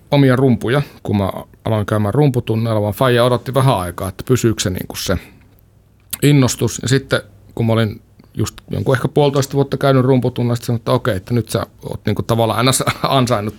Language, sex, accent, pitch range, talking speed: Finnish, male, native, 100-125 Hz, 180 wpm